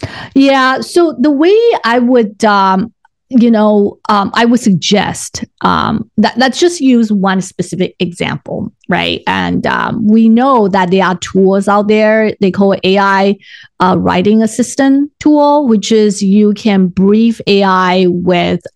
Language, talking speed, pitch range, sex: English, 150 wpm, 190-230 Hz, female